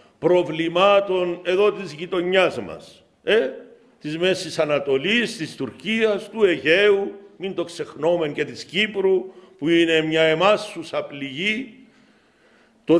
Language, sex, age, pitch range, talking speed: Greek, male, 50-69, 150-195 Hz, 115 wpm